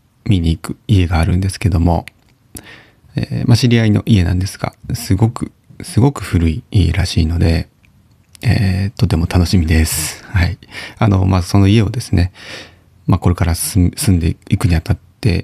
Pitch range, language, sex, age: 90-115 Hz, Japanese, male, 30-49